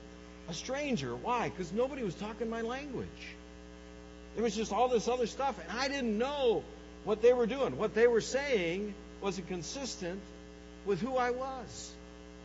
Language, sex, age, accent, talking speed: English, male, 60-79, American, 165 wpm